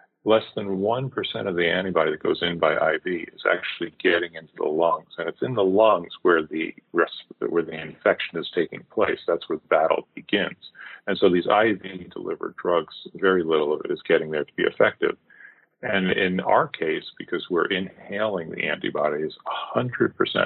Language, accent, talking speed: English, American, 175 wpm